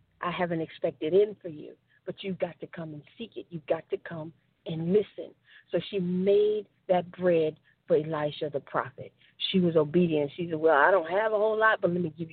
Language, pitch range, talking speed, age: English, 160-205 Hz, 220 wpm, 40-59